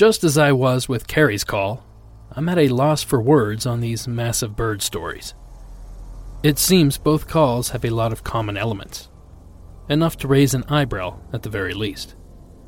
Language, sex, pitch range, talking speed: English, male, 100-140 Hz, 175 wpm